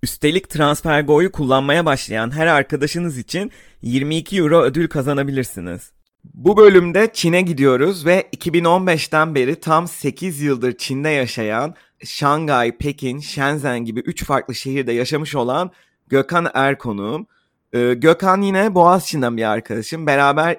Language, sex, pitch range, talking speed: Turkish, male, 125-170 Hz, 115 wpm